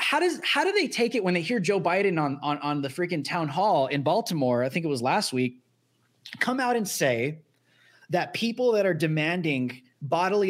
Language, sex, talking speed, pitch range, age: English, male, 210 wpm, 150-225 Hz, 20-39